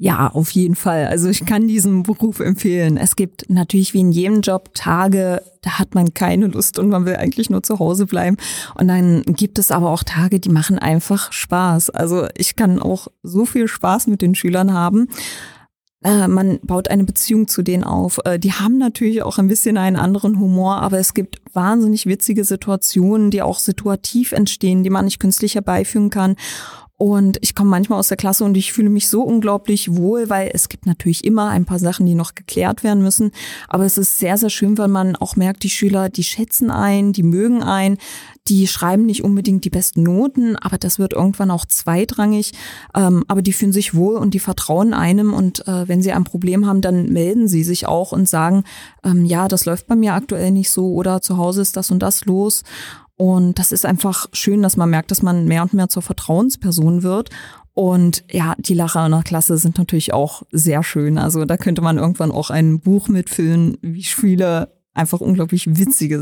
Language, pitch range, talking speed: German, 180-205 Hz, 205 wpm